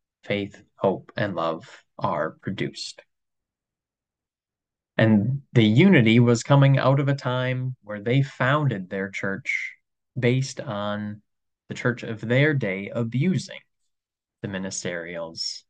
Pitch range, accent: 100-135 Hz, American